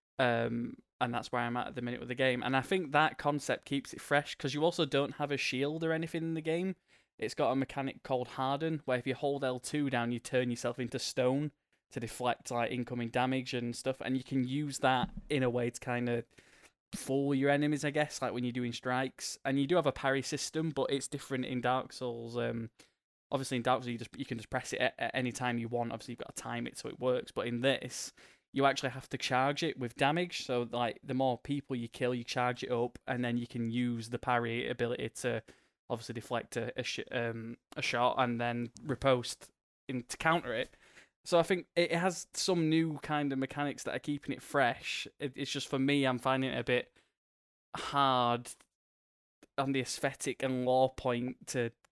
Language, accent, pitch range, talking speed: English, British, 120-140 Hz, 225 wpm